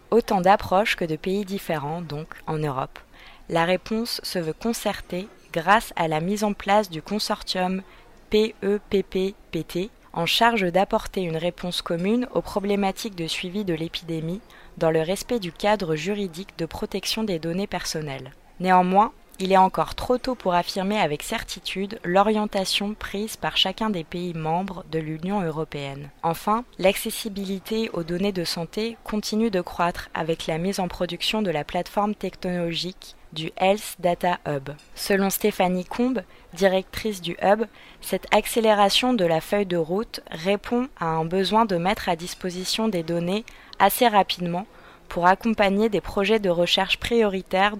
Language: French